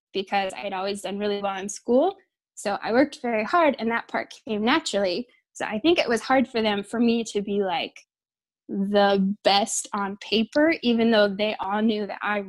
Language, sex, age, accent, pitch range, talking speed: English, female, 10-29, American, 205-245 Hz, 205 wpm